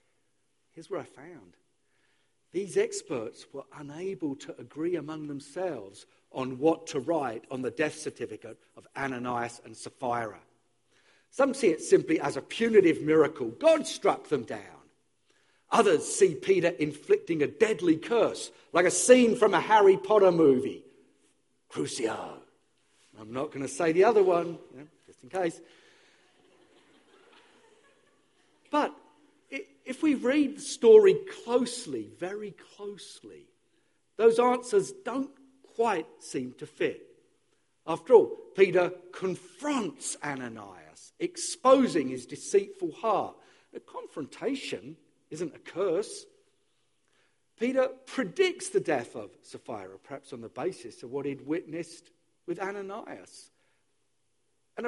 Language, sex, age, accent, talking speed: English, male, 50-69, British, 120 wpm